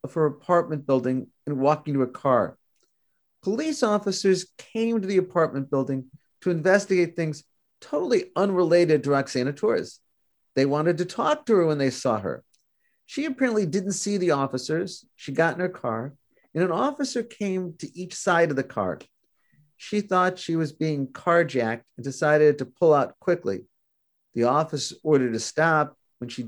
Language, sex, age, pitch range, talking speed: English, male, 40-59, 140-185 Hz, 170 wpm